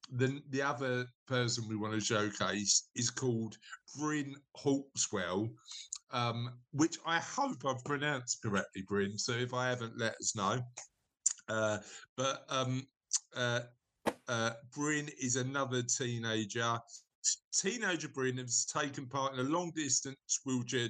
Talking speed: 130 wpm